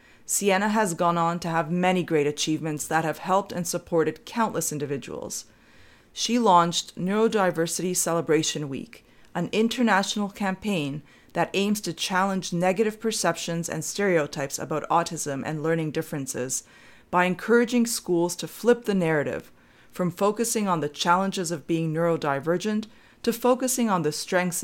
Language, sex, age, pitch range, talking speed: English, female, 30-49, 160-210 Hz, 140 wpm